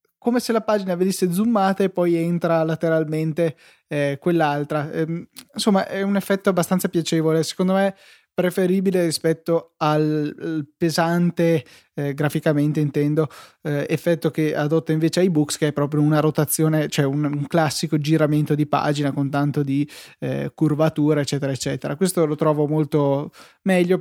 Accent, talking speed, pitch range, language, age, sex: native, 140 wpm, 150-185 Hz, Italian, 20-39, male